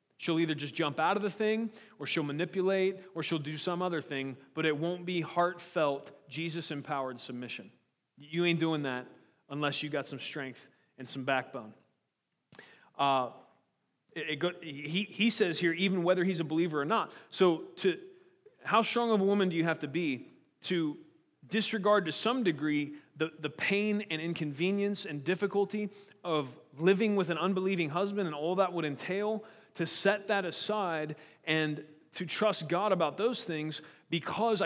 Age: 30-49